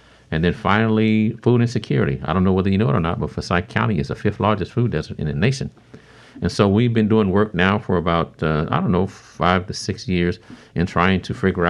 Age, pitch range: 50-69, 85-110 Hz